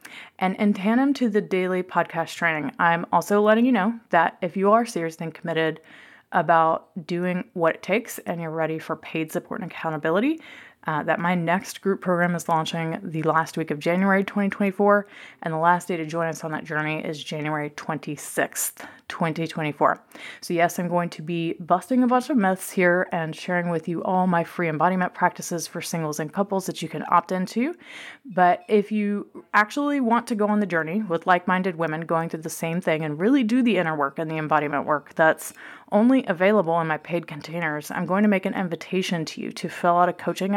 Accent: American